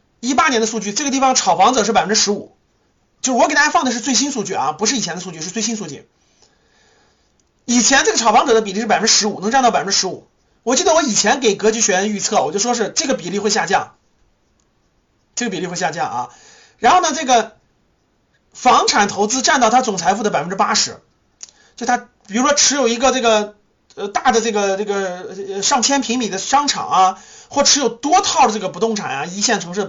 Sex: male